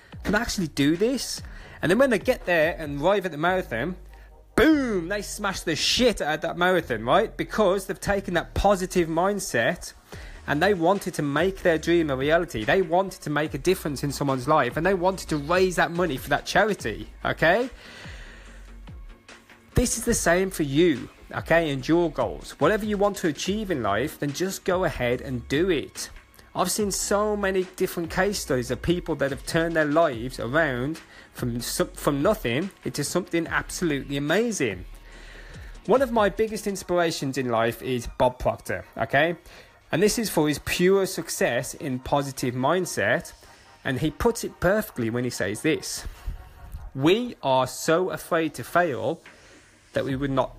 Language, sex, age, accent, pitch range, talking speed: English, male, 30-49, British, 140-190 Hz, 175 wpm